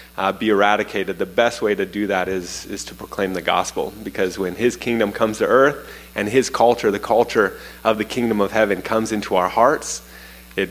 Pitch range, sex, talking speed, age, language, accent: 90-105 Hz, male, 205 wpm, 20-39, English, American